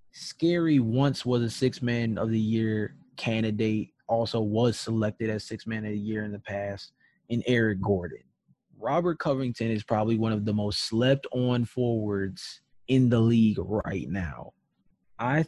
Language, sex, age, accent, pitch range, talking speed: English, male, 20-39, American, 110-130 Hz, 130 wpm